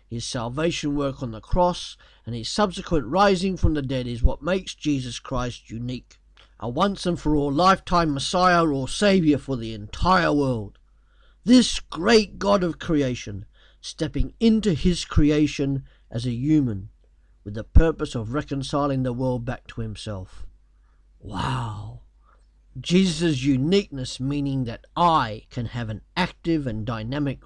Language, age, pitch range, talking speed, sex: English, 50-69, 115-165 Hz, 145 wpm, male